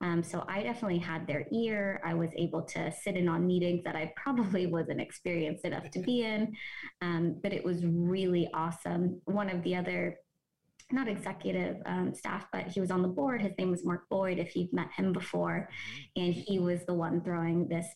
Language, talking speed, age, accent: English, 205 wpm, 20-39, American